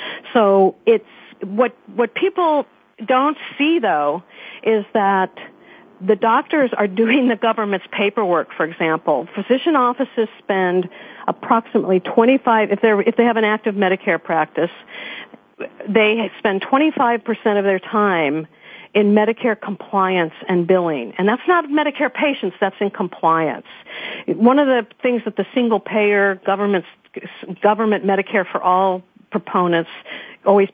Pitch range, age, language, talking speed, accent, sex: 195-235 Hz, 50-69, English, 130 wpm, American, female